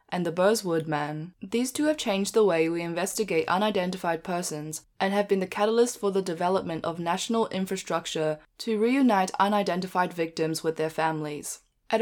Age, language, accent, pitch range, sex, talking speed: 10-29, English, Australian, 165-210 Hz, female, 165 wpm